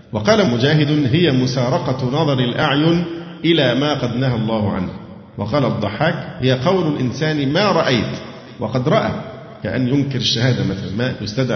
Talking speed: 135 wpm